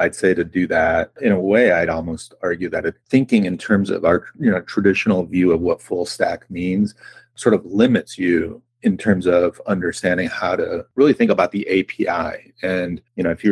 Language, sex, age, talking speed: English, male, 30-49, 205 wpm